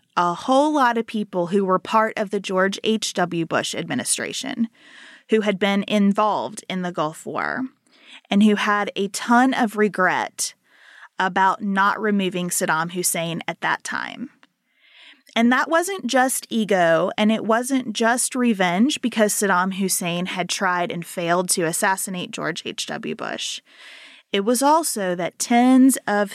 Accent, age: American, 20-39